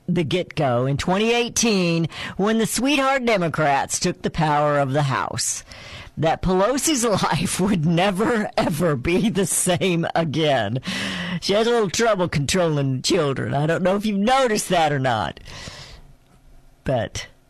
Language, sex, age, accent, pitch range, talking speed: English, female, 50-69, American, 145-215 Hz, 140 wpm